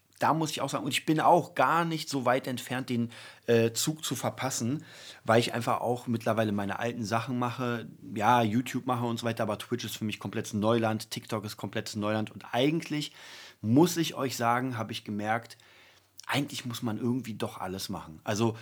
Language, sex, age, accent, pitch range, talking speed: German, male, 30-49, German, 110-135 Hz, 200 wpm